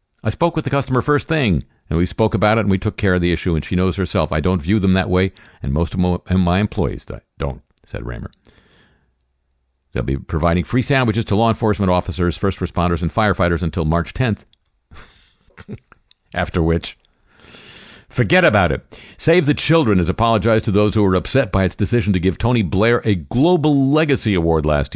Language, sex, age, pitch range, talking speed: English, male, 50-69, 85-120 Hz, 190 wpm